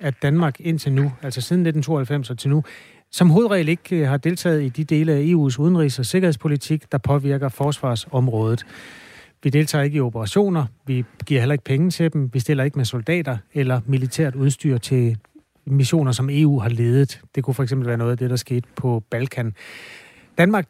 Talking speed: 190 wpm